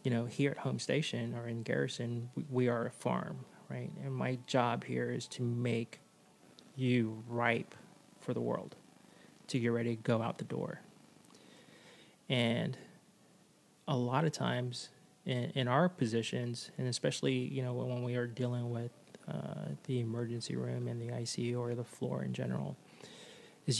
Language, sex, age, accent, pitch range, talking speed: English, male, 30-49, American, 115-130 Hz, 165 wpm